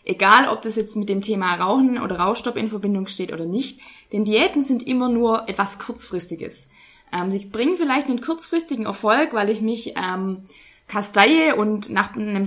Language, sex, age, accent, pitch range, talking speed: German, female, 20-39, German, 195-245 Hz, 180 wpm